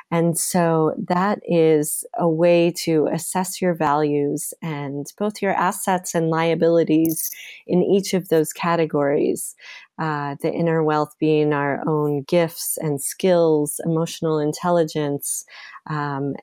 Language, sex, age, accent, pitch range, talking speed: English, female, 30-49, American, 145-170 Hz, 125 wpm